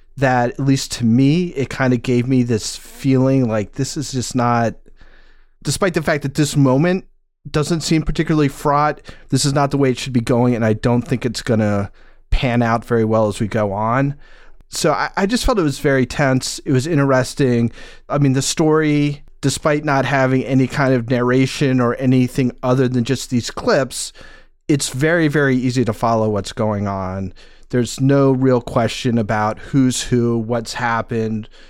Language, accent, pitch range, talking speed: English, American, 110-140 Hz, 185 wpm